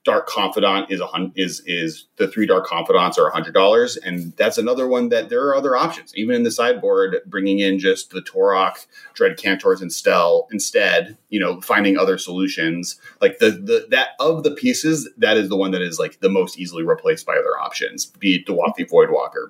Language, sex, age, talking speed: English, male, 30-49, 210 wpm